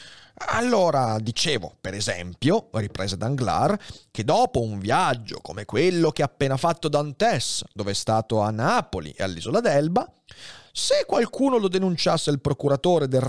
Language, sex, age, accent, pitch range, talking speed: Italian, male, 30-49, native, 110-165 Hz, 145 wpm